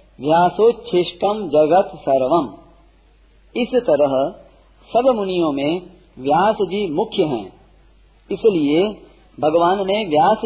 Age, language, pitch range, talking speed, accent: 50-69, Hindi, 165-225 Hz, 90 wpm, native